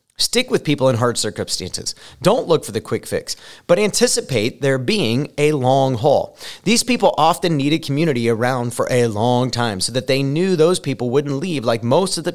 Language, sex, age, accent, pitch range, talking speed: English, male, 30-49, American, 105-140 Hz, 200 wpm